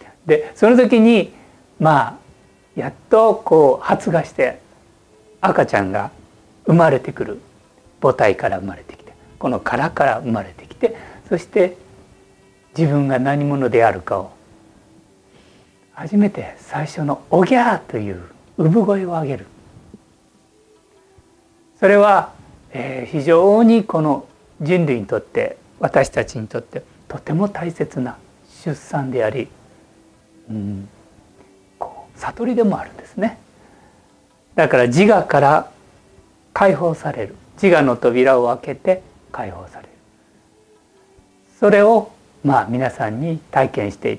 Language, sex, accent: Japanese, male, native